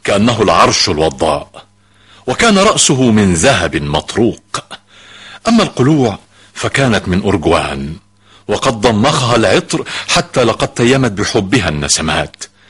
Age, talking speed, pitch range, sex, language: 60-79, 100 wpm, 95-125 Hz, male, Arabic